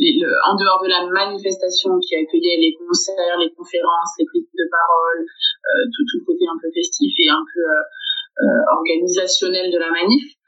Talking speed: 195 wpm